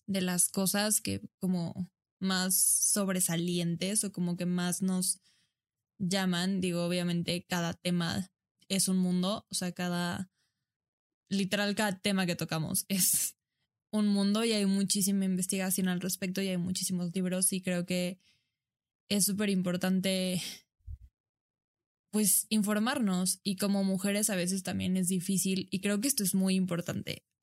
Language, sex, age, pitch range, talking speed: Spanish, female, 10-29, 180-205 Hz, 140 wpm